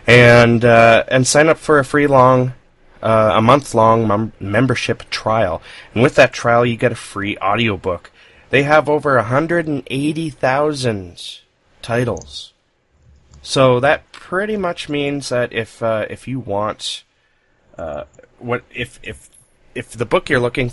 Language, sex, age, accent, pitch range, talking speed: English, male, 30-49, American, 100-125 Hz, 145 wpm